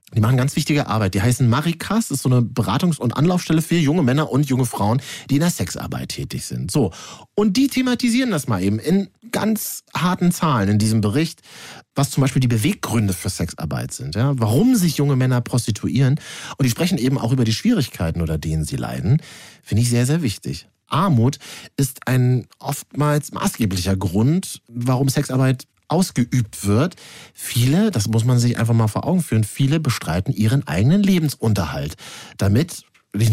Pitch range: 110-150 Hz